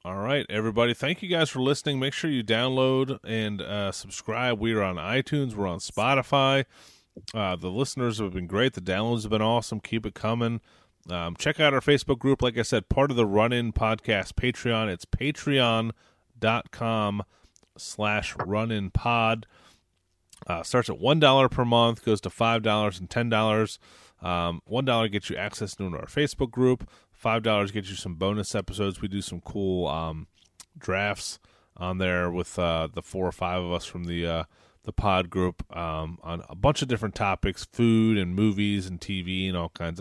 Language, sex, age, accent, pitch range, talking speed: English, male, 30-49, American, 90-120 Hz, 180 wpm